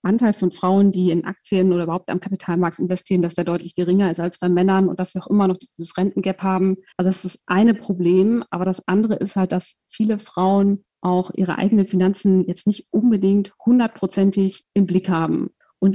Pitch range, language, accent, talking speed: 185-215 Hz, German, German, 205 wpm